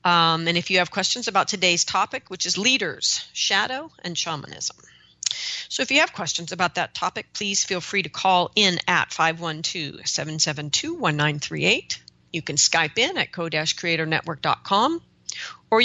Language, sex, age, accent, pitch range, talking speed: English, female, 40-59, American, 155-190 Hz, 145 wpm